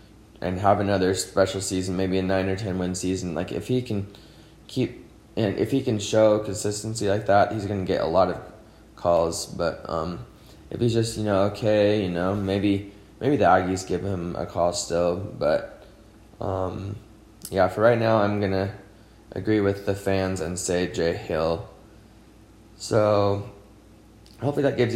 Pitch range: 95-105 Hz